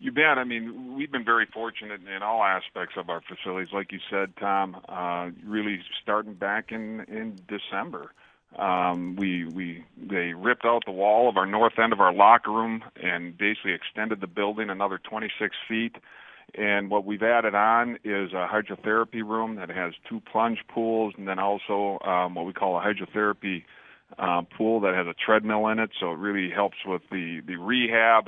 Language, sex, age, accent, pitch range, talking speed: English, male, 50-69, American, 95-110 Hz, 185 wpm